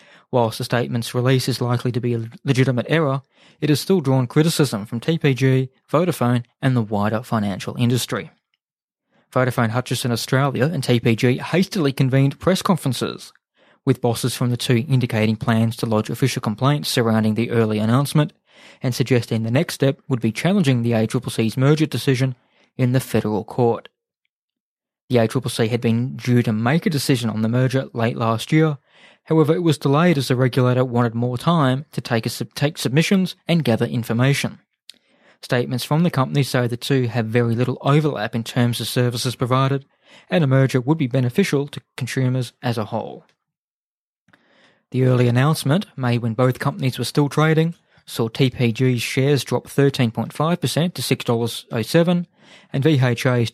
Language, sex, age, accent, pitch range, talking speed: English, male, 20-39, Australian, 120-140 Hz, 160 wpm